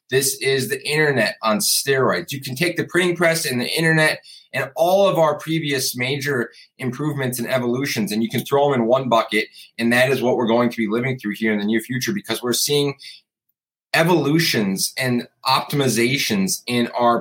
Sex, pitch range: male, 115-140 Hz